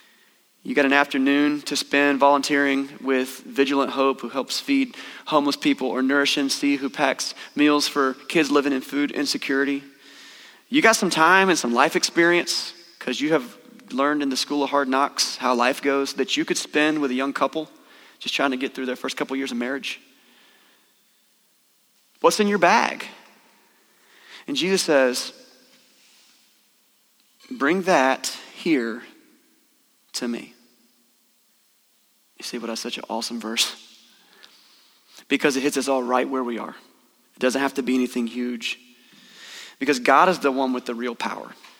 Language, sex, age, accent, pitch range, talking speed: English, male, 30-49, American, 130-175 Hz, 165 wpm